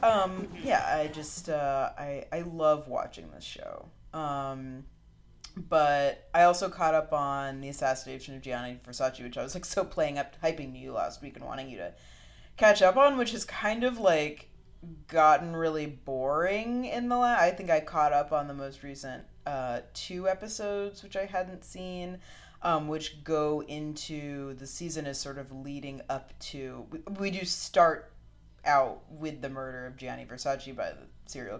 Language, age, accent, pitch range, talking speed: English, 30-49, American, 135-175 Hz, 180 wpm